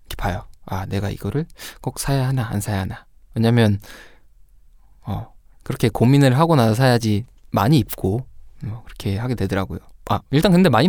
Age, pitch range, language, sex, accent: 20-39, 100-135 Hz, Korean, male, native